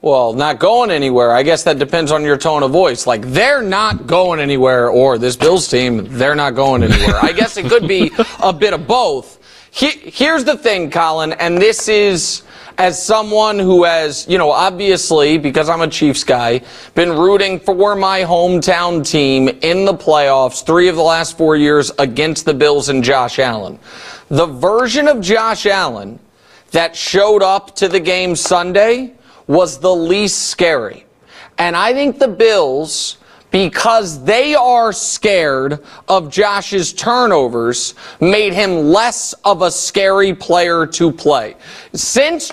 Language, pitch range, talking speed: English, 155-215 Hz, 160 wpm